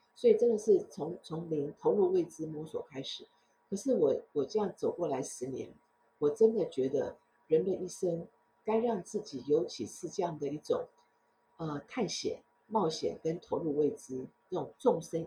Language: Chinese